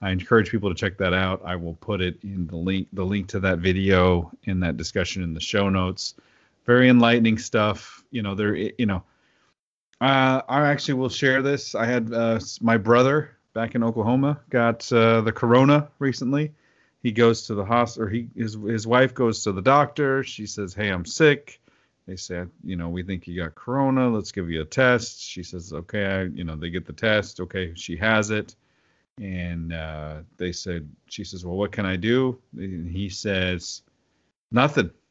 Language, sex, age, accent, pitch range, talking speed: English, male, 40-59, American, 95-125 Hz, 190 wpm